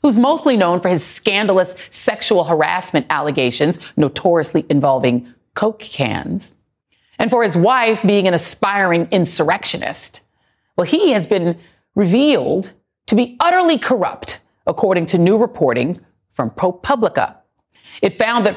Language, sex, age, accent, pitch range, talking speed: English, female, 40-59, American, 170-245 Hz, 125 wpm